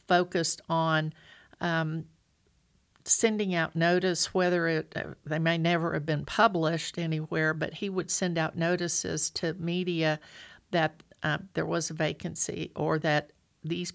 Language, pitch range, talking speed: English, 155-175 Hz, 140 wpm